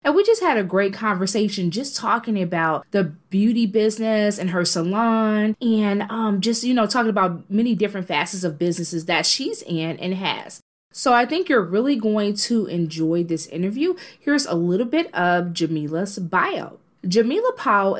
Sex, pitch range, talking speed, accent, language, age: female, 185-245 Hz, 175 wpm, American, English, 20-39